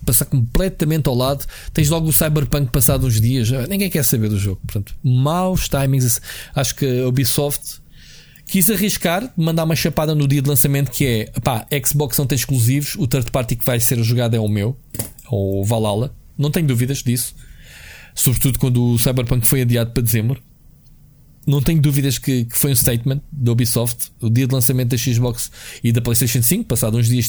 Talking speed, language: 190 wpm, Portuguese